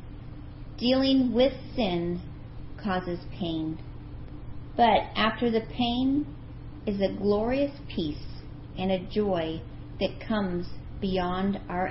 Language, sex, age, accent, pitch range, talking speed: English, female, 40-59, American, 180-235 Hz, 100 wpm